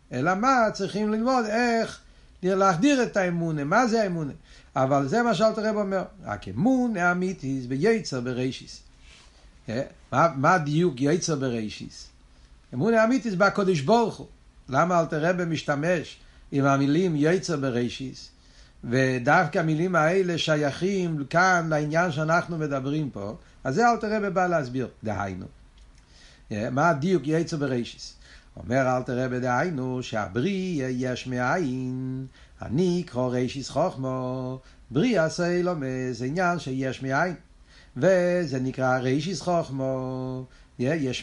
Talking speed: 120 wpm